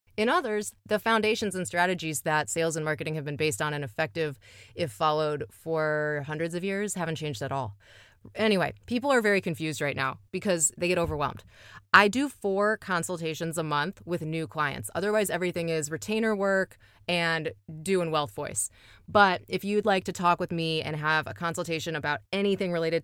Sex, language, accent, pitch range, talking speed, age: female, English, American, 150-185 Hz, 180 wpm, 20-39